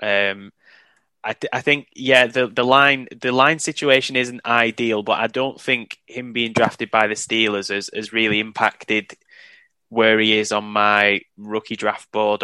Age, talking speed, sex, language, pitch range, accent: 20-39, 175 wpm, male, English, 110-130 Hz, British